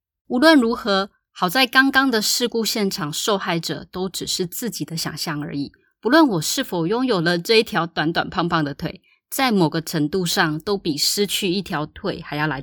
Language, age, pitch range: Chinese, 20-39, 160-225 Hz